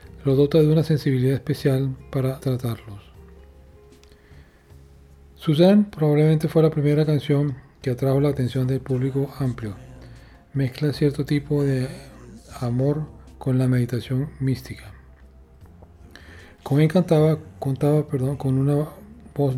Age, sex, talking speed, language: 40-59, male, 110 wpm, Spanish